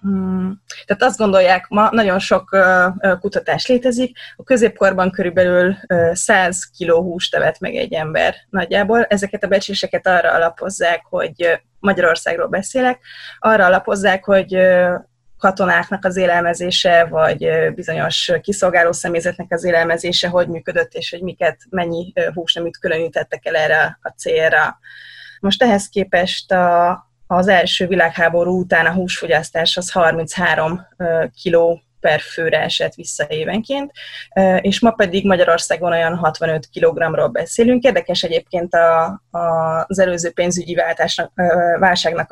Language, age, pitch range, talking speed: Hungarian, 20-39, 170-195 Hz, 120 wpm